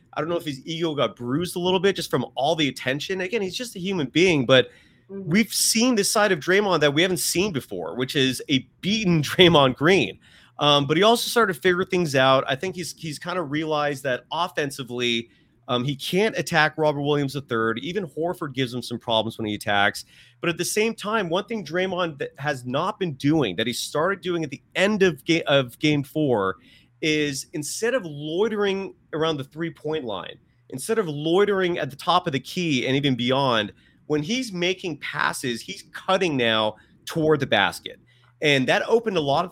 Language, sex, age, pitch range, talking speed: English, male, 30-49, 135-185 Hz, 205 wpm